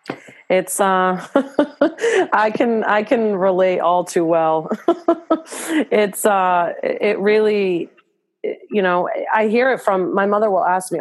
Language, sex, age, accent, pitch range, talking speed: English, female, 30-49, American, 170-230 Hz, 135 wpm